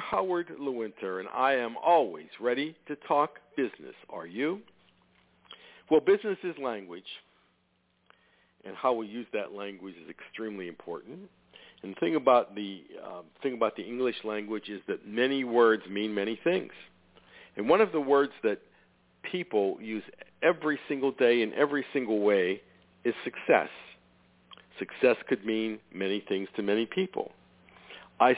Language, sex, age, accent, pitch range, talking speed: English, male, 50-69, American, 105-155 Hz, 145 wpm